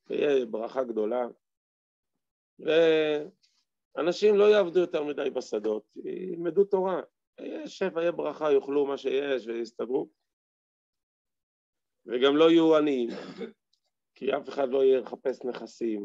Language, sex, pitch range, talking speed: Hebrew, male, 105-155 Hz, 110 wpm